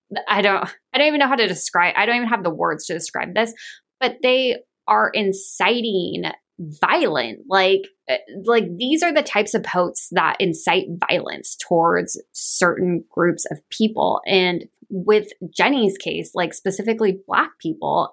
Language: English